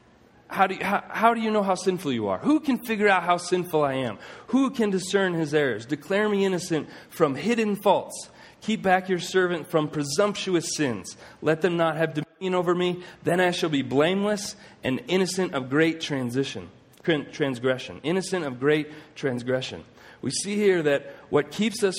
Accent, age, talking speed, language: American, 40-59, 170 wpm, English